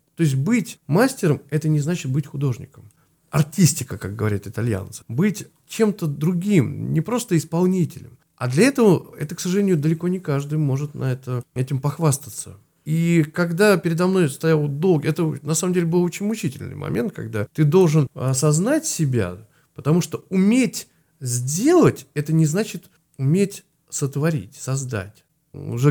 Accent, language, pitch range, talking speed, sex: native, Russian, 125-165 Hz, 140 wpm, male